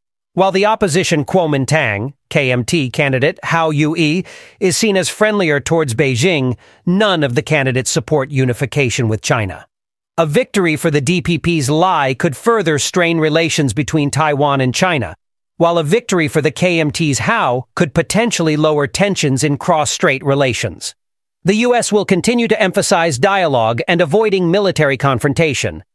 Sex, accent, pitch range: male, American, 135-185 Hz